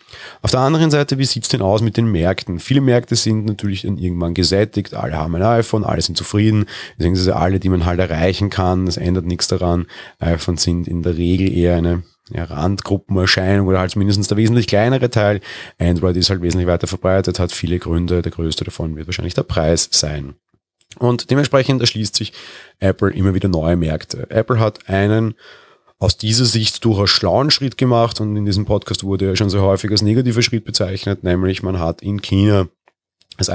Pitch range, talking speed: 90-110 Hz, 195 wpm